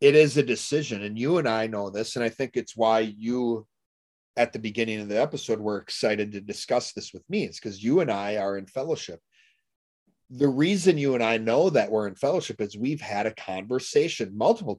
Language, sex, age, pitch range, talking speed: English, male, 40-59, 105-135 Hz, 215 wpm